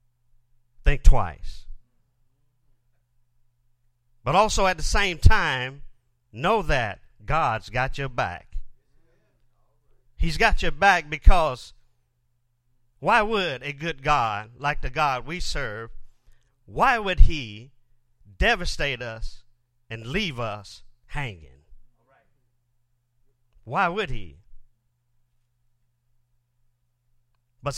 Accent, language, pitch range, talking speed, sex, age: American, English, 120-135 Hz, 90 wpm, male, 50-69